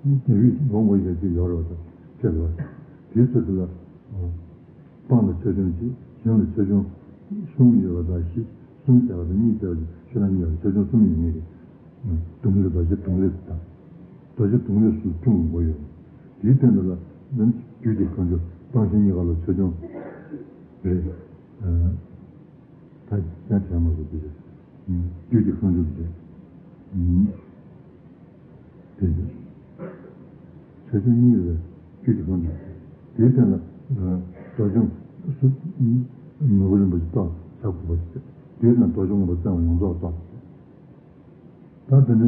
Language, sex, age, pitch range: Italian, male, 60-79, 85-115 Hz